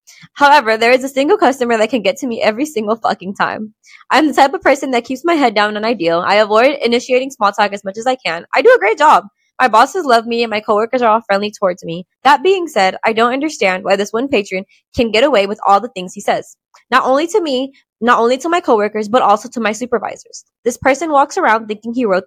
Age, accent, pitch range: 20-39, American, 200-260 Hz